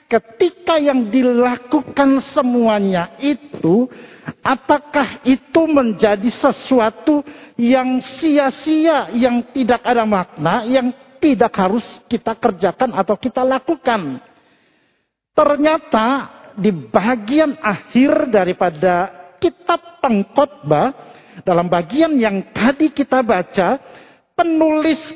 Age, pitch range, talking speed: 50-69, 225-290 Hz, 90 wpm